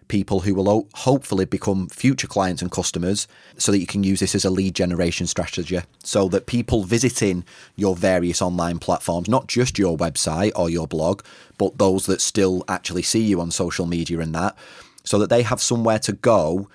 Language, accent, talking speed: English, British, 195 wpm